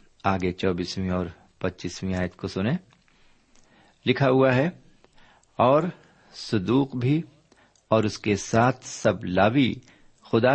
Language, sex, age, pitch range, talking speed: Urdu, male, 50-69, 95-130 Hz, 115 wpm